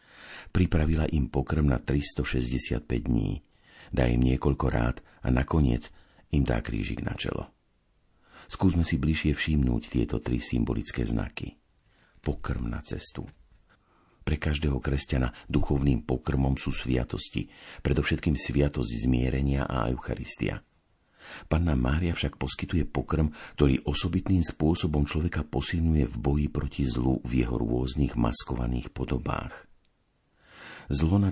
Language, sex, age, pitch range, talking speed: Slovak, male, 50-69, 65-80 Hz, 115 wpm